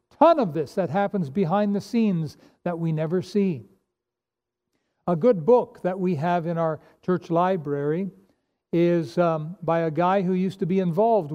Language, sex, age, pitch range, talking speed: English, male, 60-79, 165-195 Hz, 170 wpm